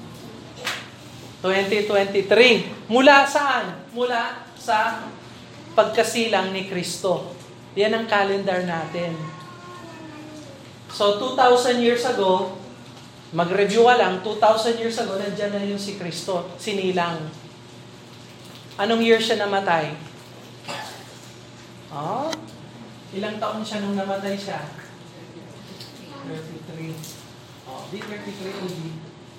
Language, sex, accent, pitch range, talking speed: Filipino, male, native, 165-225 Hz, 85 wpm